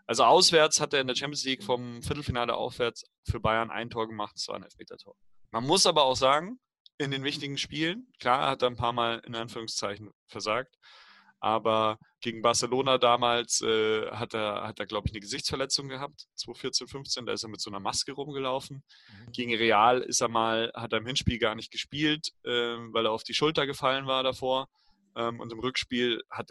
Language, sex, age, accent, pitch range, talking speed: German, male, 30-49, German, 110-135 Hz, 195 wpm